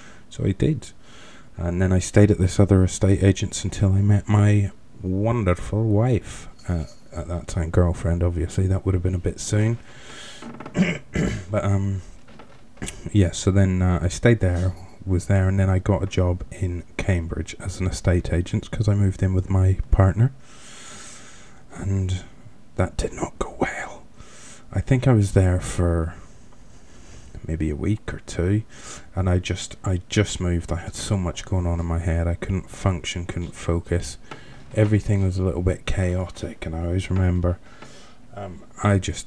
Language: English